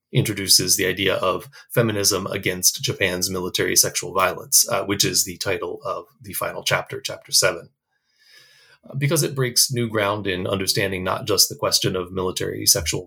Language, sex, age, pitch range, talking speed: English, male, 30-49, 100-135 Hz, 165 wpm